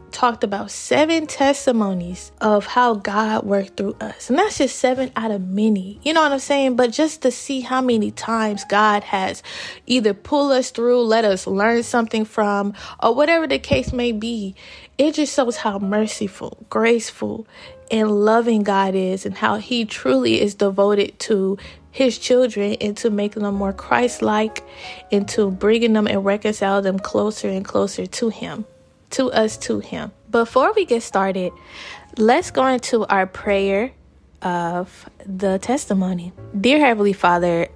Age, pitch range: 20-39, 195-240 Hz